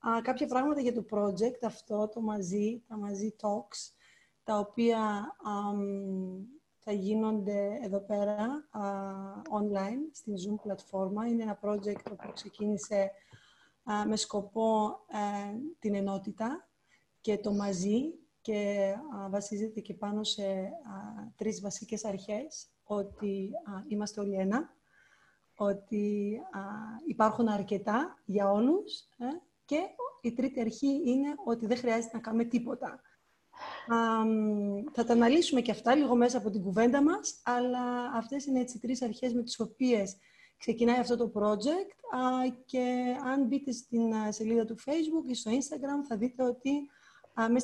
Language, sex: Greek, female